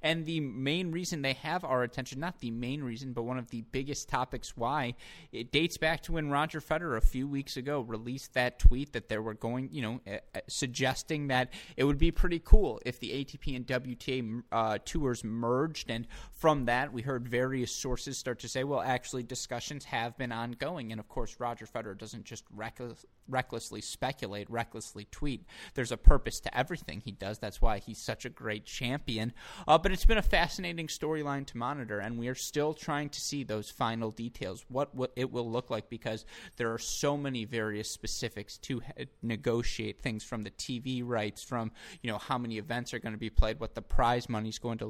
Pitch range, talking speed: 115-140 Hz, 200 wpm